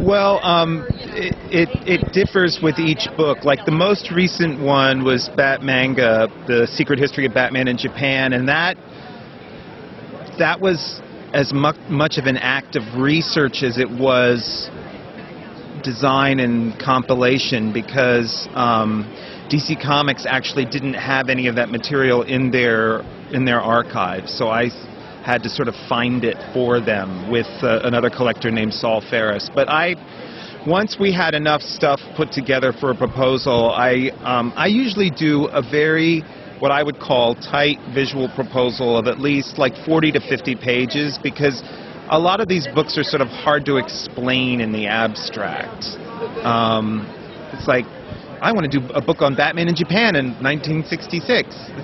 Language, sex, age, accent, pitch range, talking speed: English, male, 40-59, American, 125-155 Hz, 160 wpm